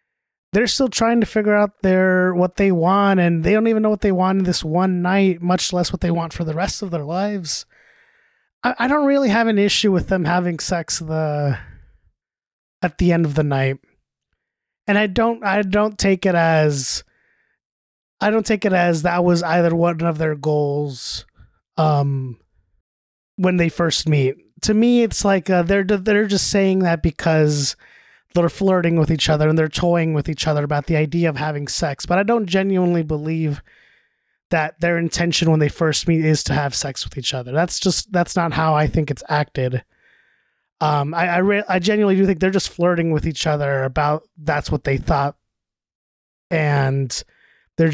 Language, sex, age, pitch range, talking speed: English, male, 20-39, 145-190 Hz, 190 wpm